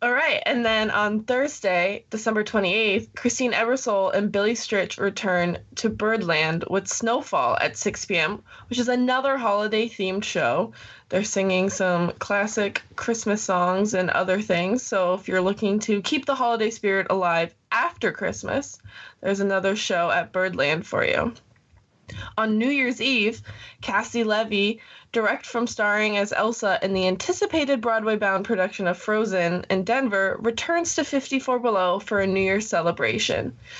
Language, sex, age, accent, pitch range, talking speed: English, female, 20-39, American, 190-235 Hz, 145 wpm